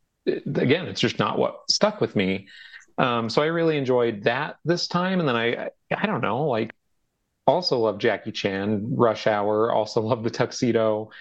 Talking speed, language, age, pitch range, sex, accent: 180 wpm, English, 30-49, 105-120 Hz, male, American